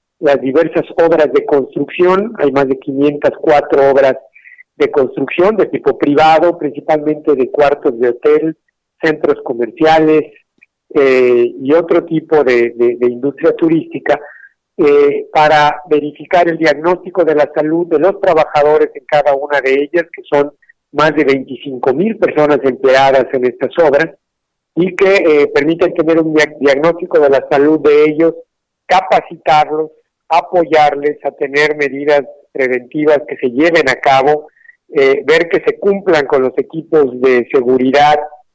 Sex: male